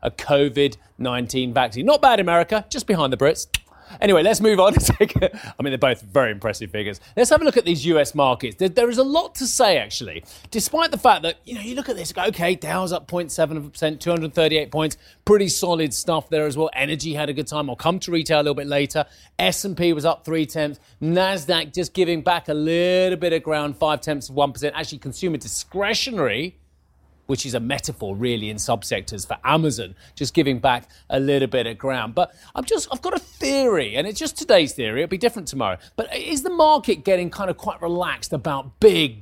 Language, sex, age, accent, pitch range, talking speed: English, male, 30-49, British, 140-190 Hz, 205 wpm